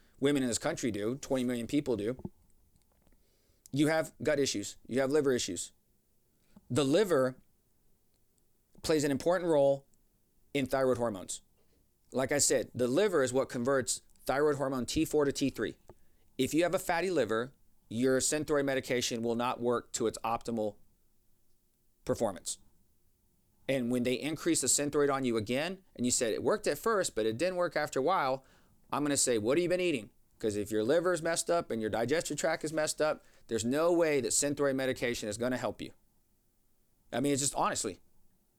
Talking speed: 180 wpm